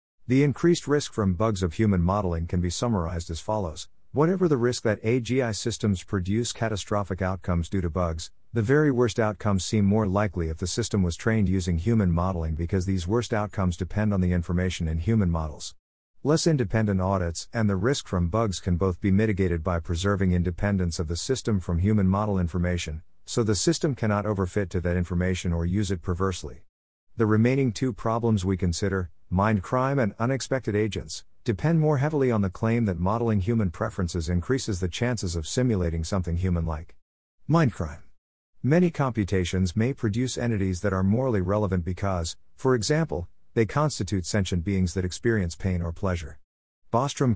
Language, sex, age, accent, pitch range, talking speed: English, male, 50-69, American, 90-115 Hz, 175 wpm